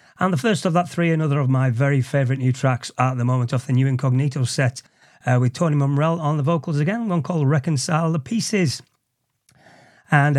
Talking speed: 200 wpm